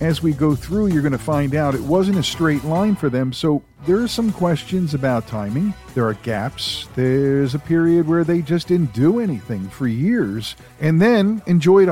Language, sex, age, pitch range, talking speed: English, male, 50-69, 125-165 Hz, 200 wpm